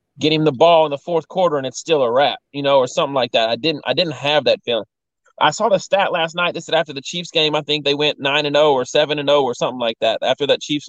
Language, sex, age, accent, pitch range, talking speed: English, male, 20-39, American, 125-160 Hz, 310 wpm